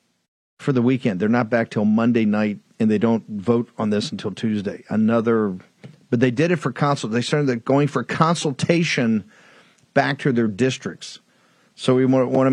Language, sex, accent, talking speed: English, male, American, 175 wpm